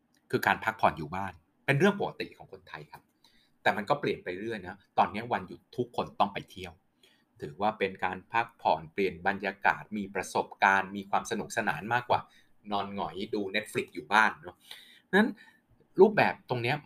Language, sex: Thai, male